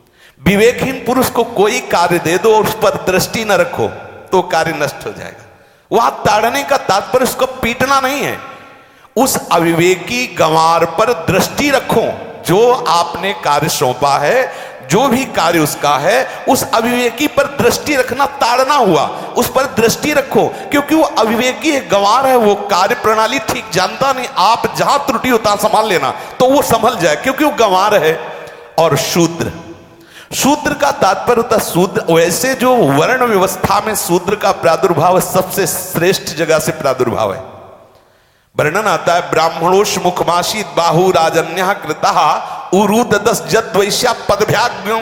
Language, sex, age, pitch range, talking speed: Hindi, male, 50-69, 175-245 Hz, 140 wpm